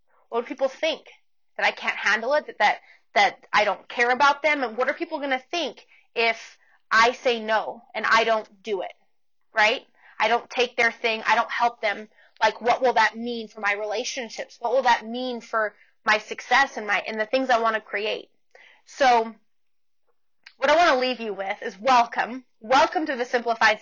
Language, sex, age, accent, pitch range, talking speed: English, female, 20-39, American, 220-260 Hz, 195 wpm